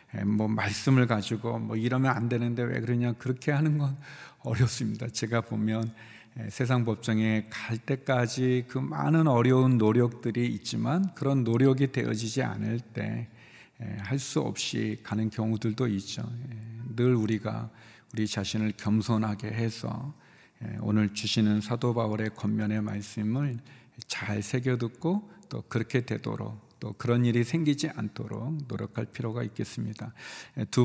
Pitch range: 110-135 Hz